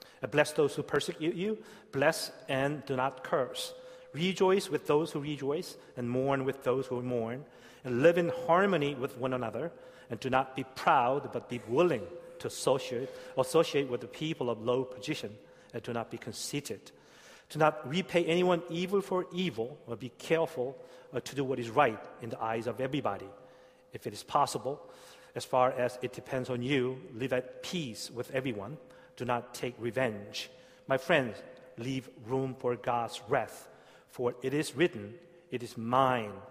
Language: Korean